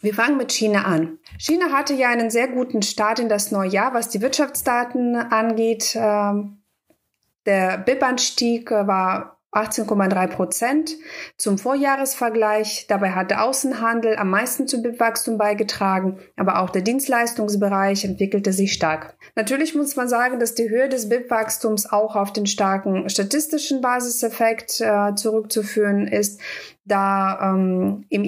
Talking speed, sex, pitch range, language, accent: 135 wpm, female, 195-240 Hz, German, German